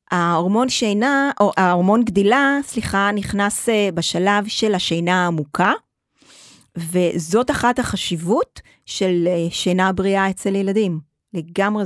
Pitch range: 175-235 Hz